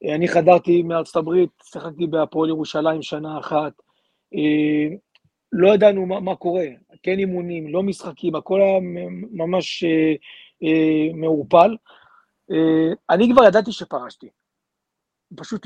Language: Hebrew